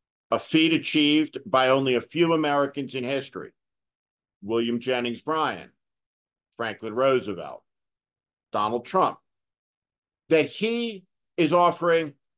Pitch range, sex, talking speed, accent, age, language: 120-170 Hz, male, 100 wpm, American, 50-69, English